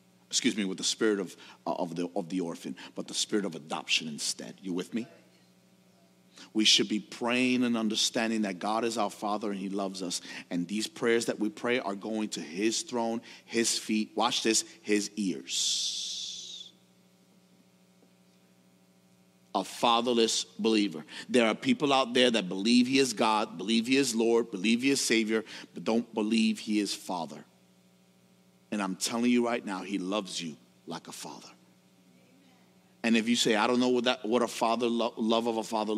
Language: English